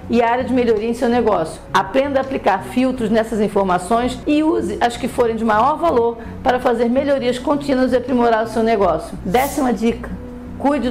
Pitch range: 210-250 Hz